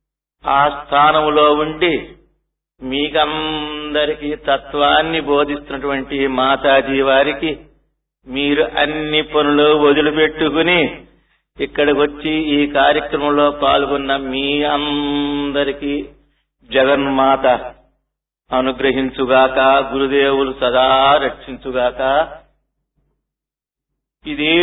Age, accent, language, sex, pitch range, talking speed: 50-69, native, Telugu, male, 140-180 Hz, 60 wpm